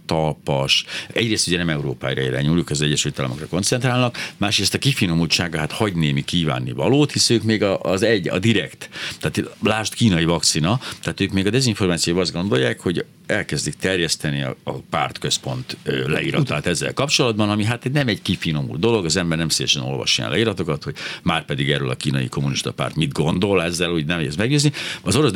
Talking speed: 175 wpm